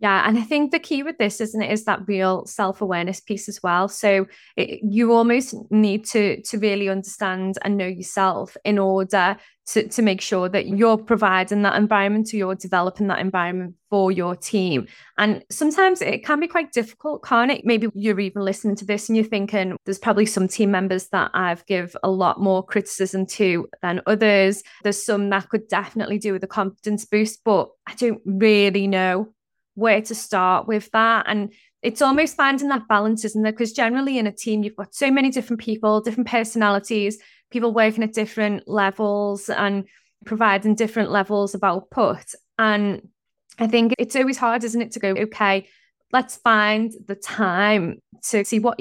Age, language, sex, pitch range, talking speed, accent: 20-39, English, female, 195-225 Hz, 185 wpm, British